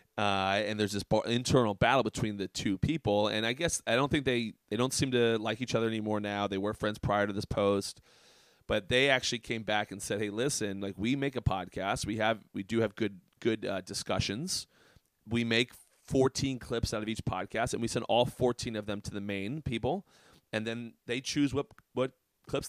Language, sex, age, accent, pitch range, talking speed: English, male, 30-49, American, 105-130 Hz, 220 wpm